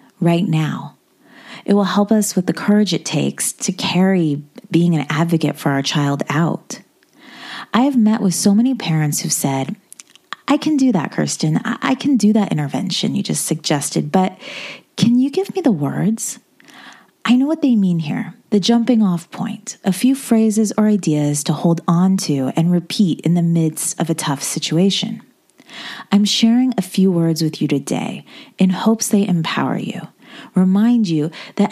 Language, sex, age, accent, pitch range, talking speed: English, female, 30-49, American, 170-235 Hz, 180 wpm